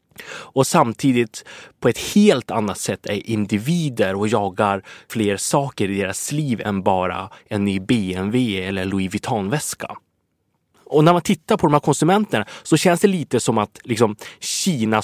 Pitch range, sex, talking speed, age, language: 100-135 Hz, male, 155 wpm, 20-39, English